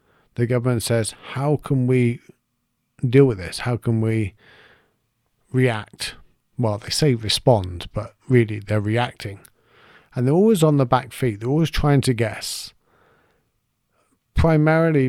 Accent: British